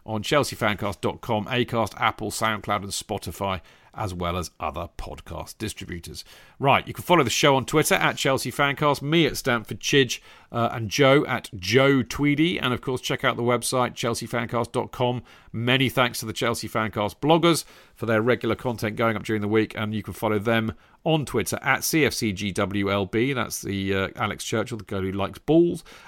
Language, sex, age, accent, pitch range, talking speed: English, male, 40-59, British, 110-140 Hz, 175 wpm